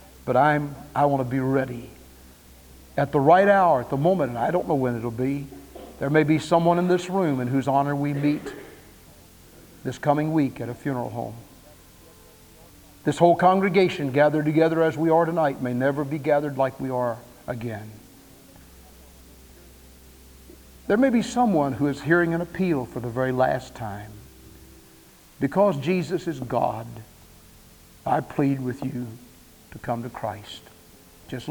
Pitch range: 115-160 Hz